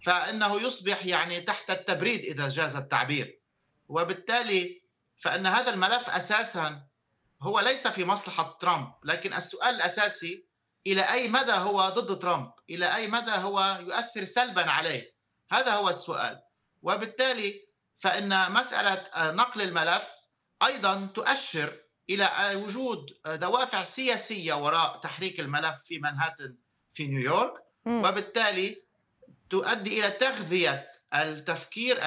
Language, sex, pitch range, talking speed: Arabic, male, 170-210 Hz, 110 wpm